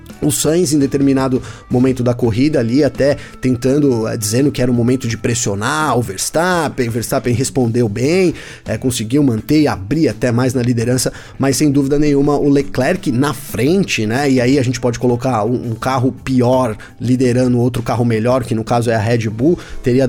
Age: 20-39